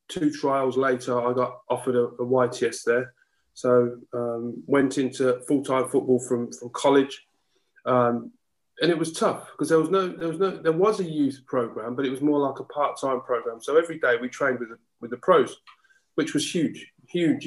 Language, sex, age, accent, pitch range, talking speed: English, male, 30-49, British, 125-155 Hz, 195 wpm